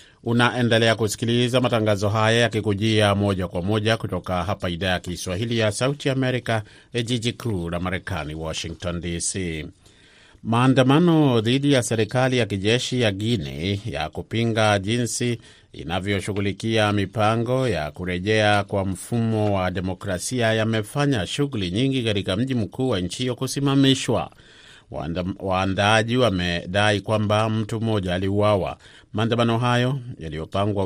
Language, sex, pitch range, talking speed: Swahili, male, 95-120 Hz, 120 wpm